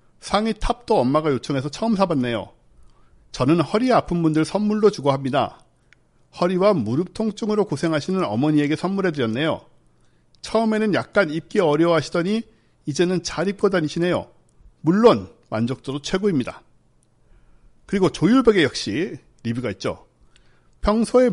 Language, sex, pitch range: Korean, male, 135-205 Hz